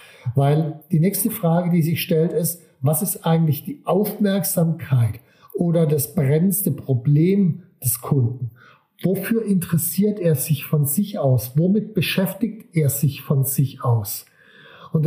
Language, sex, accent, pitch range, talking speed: German, male, German, 145-180 Hz, 135 wpm